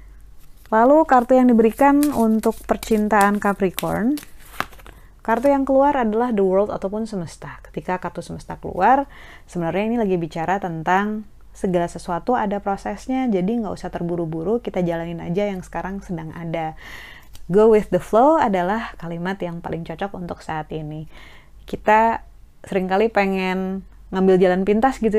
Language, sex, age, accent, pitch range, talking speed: Indonesian, female, 20-39, native, 170-225 Hz, 140 wpm